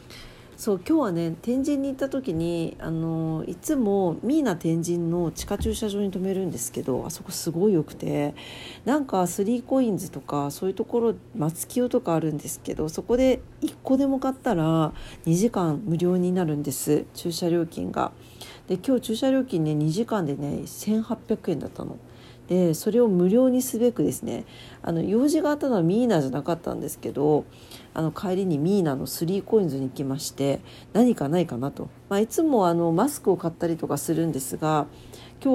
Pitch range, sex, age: 150-230 Hz, female, 40-59